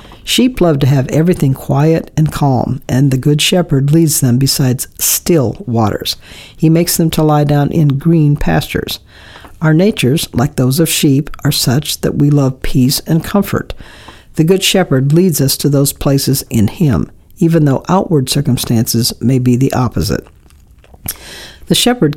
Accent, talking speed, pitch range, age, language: American, 160 wpm, 130-160 Hz, 60-79, English